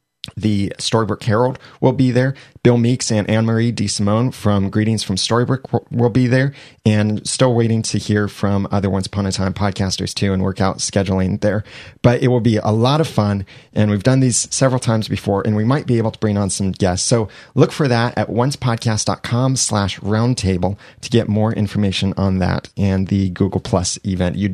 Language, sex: English, male